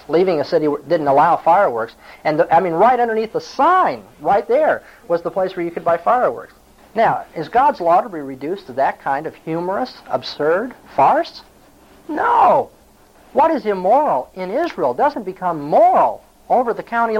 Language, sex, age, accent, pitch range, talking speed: English, male, 50-69, American, 150-215 Hz, 170 wpm